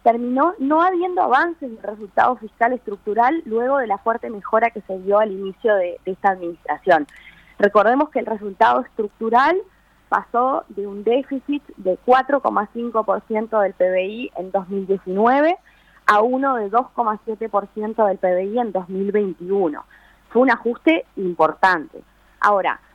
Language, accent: Spanish, Argentinian